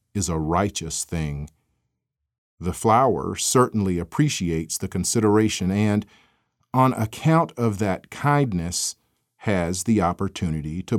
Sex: male